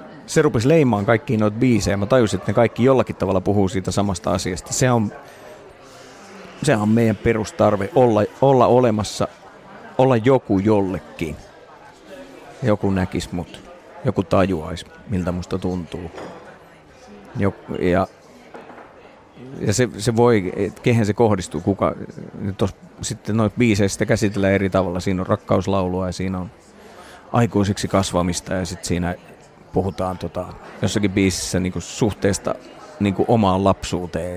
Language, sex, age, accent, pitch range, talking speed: English, male, 30-49, Finnish, 90-105 Hz, 125 wpm